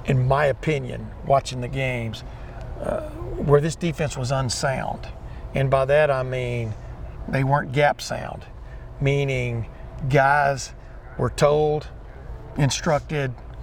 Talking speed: 115 wpm